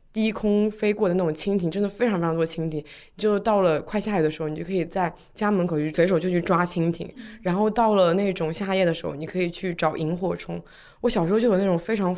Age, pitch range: 20-39, 165-215 Hz